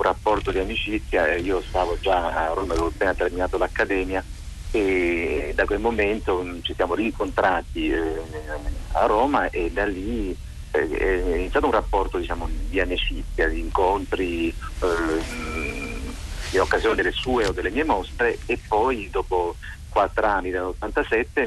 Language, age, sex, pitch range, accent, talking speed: Italian, 50-69, male, 80-105 Hz, native, 140 wpm